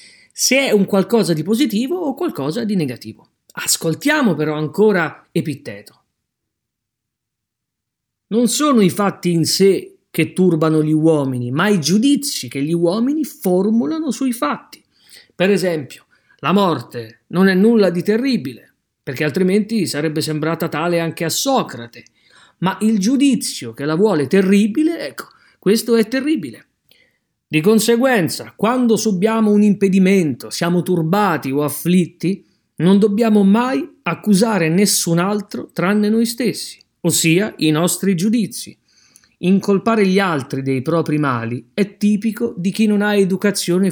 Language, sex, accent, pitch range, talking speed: Italian, male, native, 160-225 Hz, 135 wpm